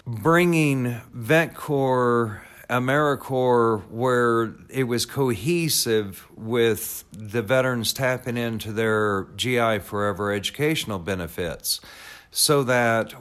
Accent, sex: American, male